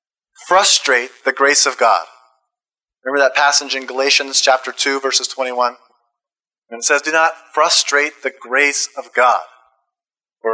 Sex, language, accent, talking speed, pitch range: male, English, American, 135 wpm, 135-170 Hz